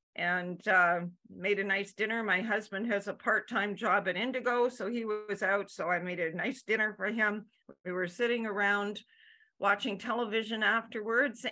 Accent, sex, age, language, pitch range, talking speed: American, female, 50-69, English, 180-220 Hz, 170 wpm